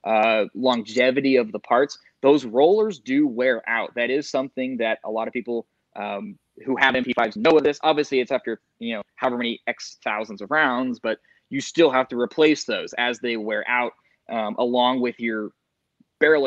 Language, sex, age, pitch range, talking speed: English, male, 20-39, 120-150 Hz, 190 wpm